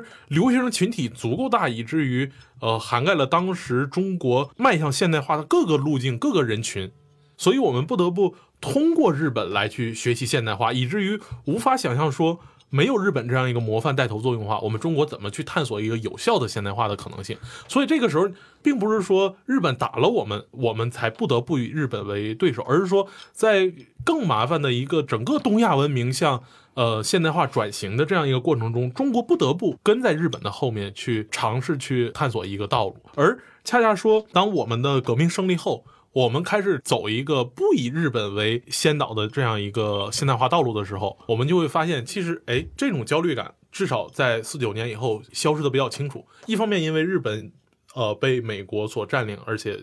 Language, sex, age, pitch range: Chinese, male, 20-39, 115-170 Hz